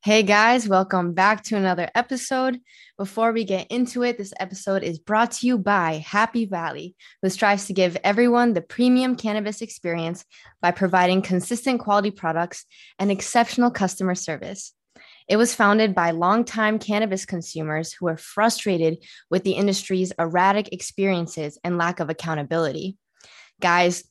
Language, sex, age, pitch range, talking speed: English, female, 20-39, 175-220 Hz, 145 wpm